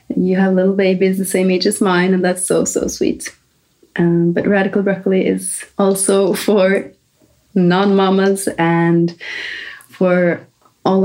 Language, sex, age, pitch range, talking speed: English, female, 30-49, 185-210 Hz, 135 wpm